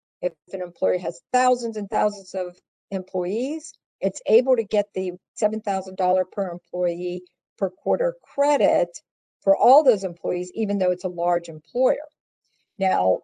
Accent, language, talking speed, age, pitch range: American, English, 140 wpm, 50-69, 180-235 Hz